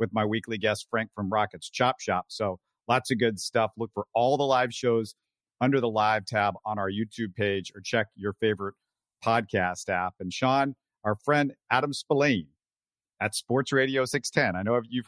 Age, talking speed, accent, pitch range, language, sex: 50-69, 185 wpm, American, 105-140 Hz, English, male